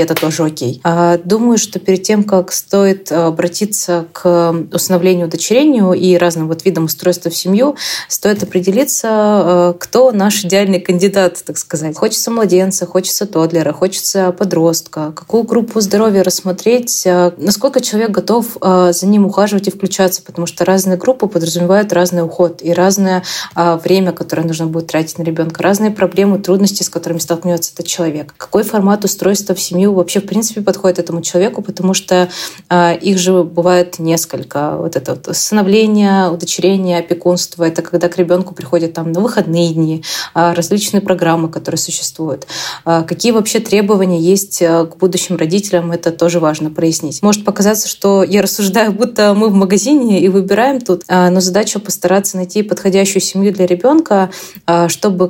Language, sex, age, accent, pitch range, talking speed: Russian, female, 20-39, native, 170-200 Hz, 155 wpm